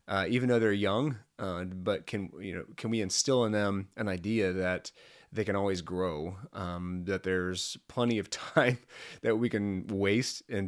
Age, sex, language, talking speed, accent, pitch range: 30-49, male, English, 185 wpm, American, 100-120 Hz